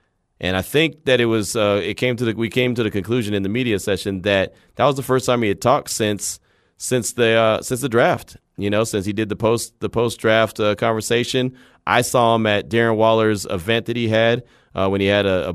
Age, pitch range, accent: 30-49, 95-115 Hz, American